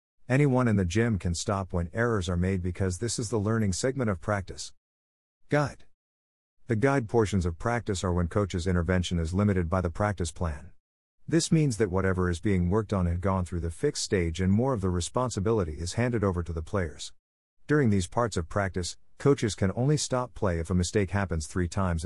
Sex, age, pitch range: male, 50-69, 85-110 Hz